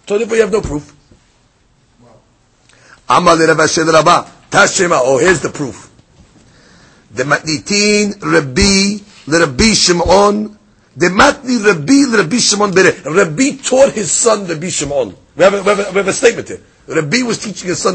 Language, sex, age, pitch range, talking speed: English, male, 50-69, 145-210 Hz, 55 wpm